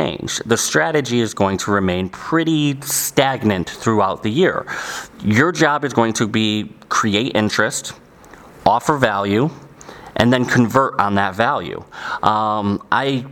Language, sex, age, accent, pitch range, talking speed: English, male, 30-49, American, 110-135 Hz, 125 wpm